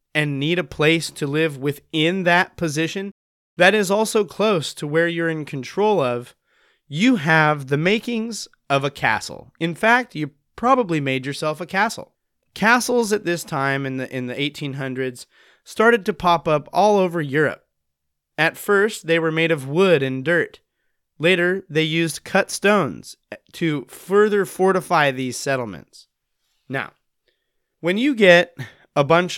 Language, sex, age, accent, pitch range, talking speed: English, male, 30-49, American, 140-185 Hz, 155 wpm